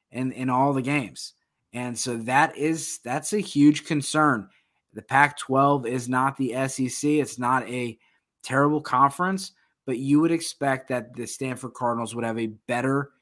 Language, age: English, 20-39